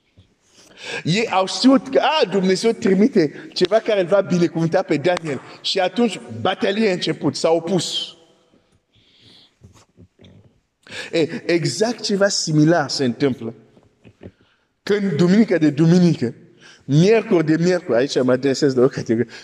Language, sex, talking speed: Romanian, male, 125 wpm